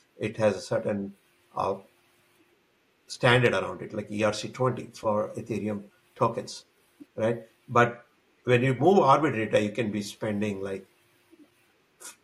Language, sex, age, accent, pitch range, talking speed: English, male, 60-79, Indian, 105-125 Hz, 125 wpm